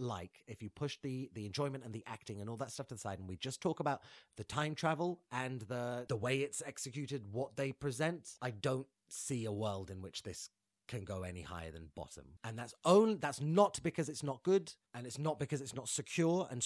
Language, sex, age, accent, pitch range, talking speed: English, male, 30-49, British, 105-145 Hz, 235 wpm